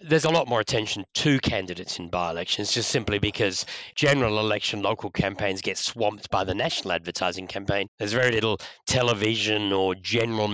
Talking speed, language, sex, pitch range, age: 165 wpm, English, male, 95-115 Hz, 40-59